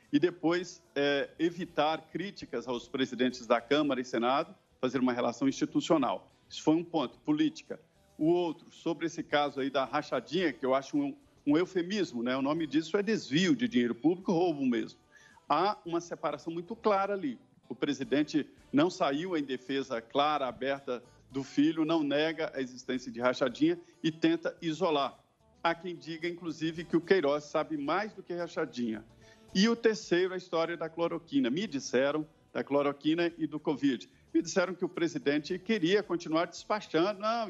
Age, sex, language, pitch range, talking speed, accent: 50-69, male, Portuguese, 140-195 Hz, 170 wpm, Brazilian